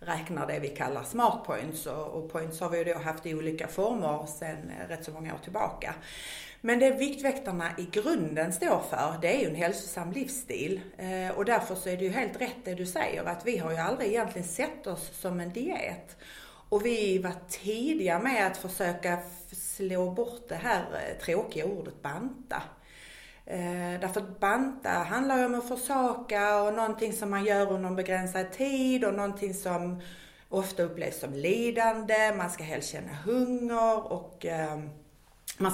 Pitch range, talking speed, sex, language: 180-235 Hz, 165 wpm, female, Swedish